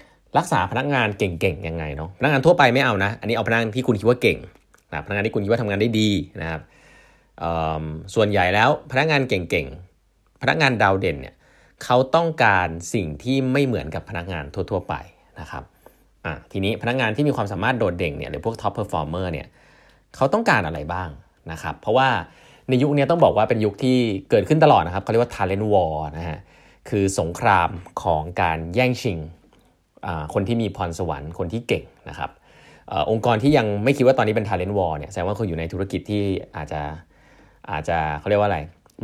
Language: Thai